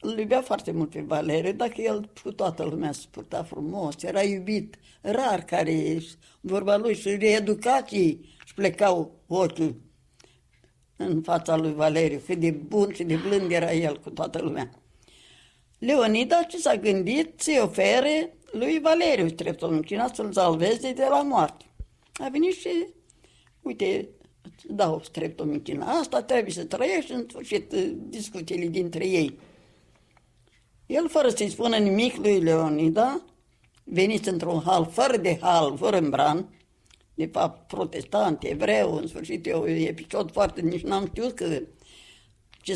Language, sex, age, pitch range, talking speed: Romanian, female, 60-79, 165-240 Hz, 140 wpm